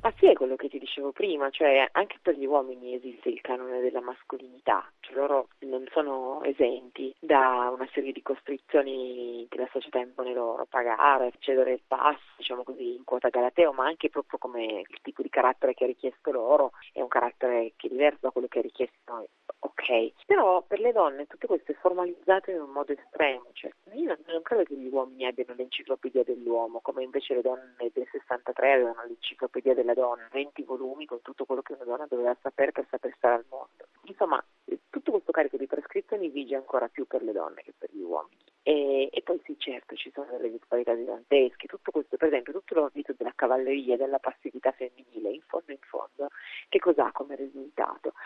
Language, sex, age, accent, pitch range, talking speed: Italian, female, 30-49, native, 130-160 Hz, 200 wpm